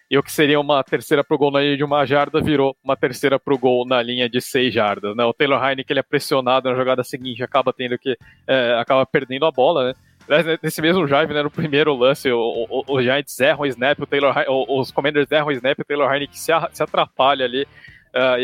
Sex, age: male, 20-39